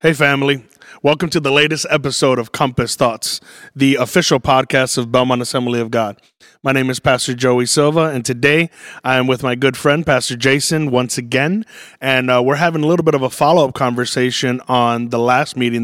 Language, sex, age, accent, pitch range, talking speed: English, male, 30-49, American, 120-135 Hz, 195 wpm